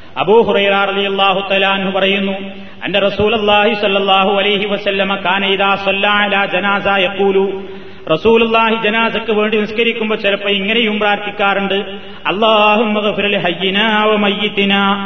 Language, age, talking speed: Malayalam, 30-49, 120 wpm